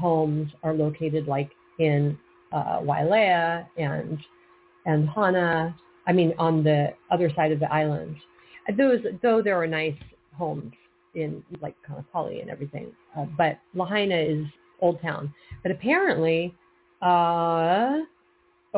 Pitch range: 155-180 Hz